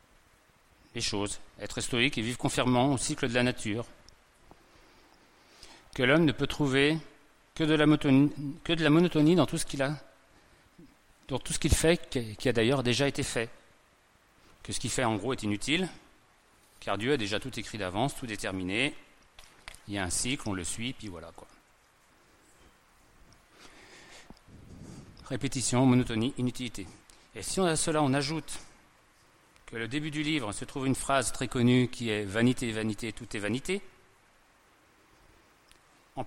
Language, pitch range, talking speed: French, 110-140 Hz, 160 wpm